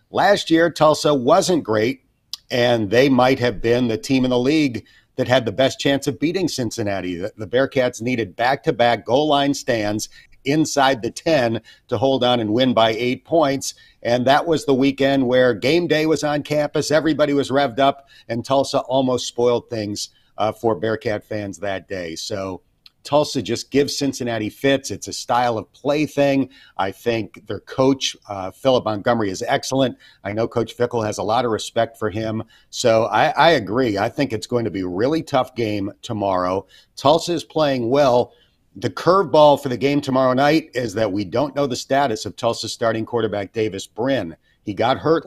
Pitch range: 110-140 Hz